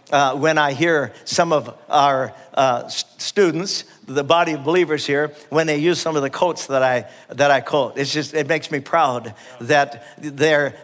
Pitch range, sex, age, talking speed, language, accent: 135-165 Hz, male, 60-79, 190 wpm, English, American